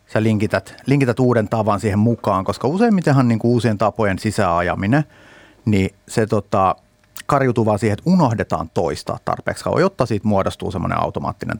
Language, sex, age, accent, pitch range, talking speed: Finnish, male, 30-49, native, 100-125 Hz, 145 wpm